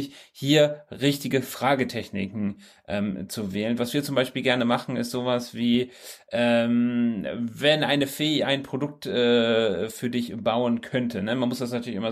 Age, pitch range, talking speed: 30-49, 115-140 Hz, 160 wpm